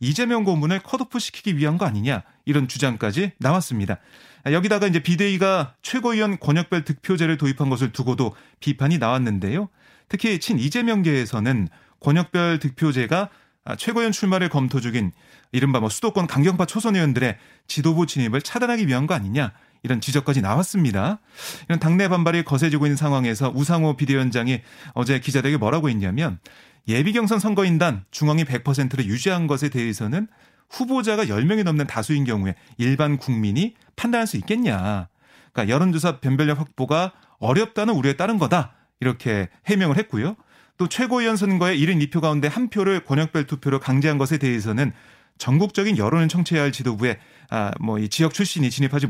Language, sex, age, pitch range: Korean, male, 30-49, 130-190 Hz